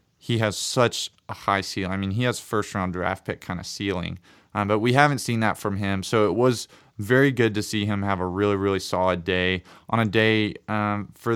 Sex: male